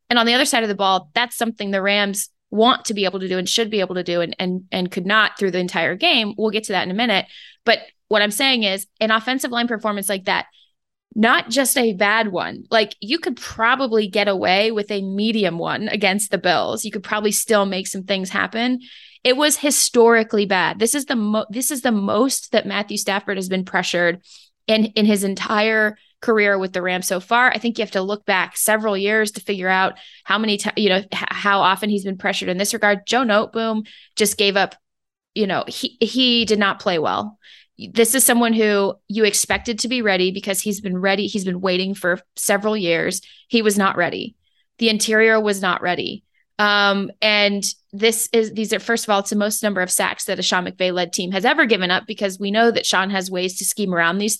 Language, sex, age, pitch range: English, female, 20-39, 195-225 Hz